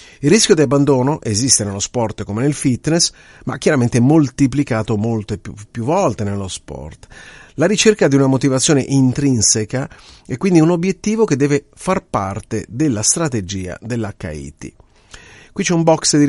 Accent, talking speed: native, 155 wpm